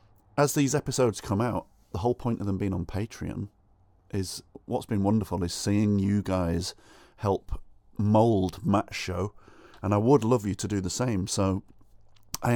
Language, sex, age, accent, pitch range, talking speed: English, male, 30-49, British, 90-125 Hz, 170 wpm